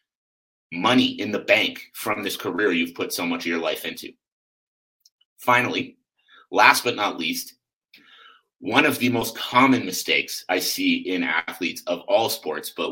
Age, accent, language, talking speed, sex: 30-49, American, English, 160 wpm, male